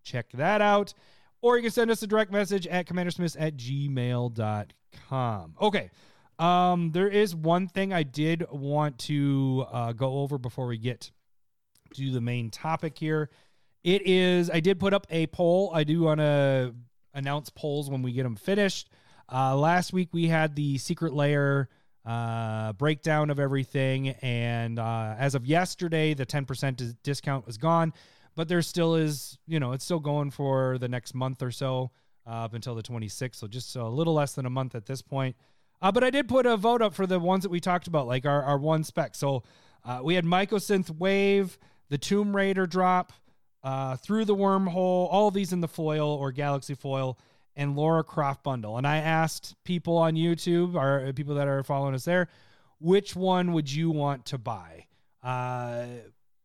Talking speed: 190 wpm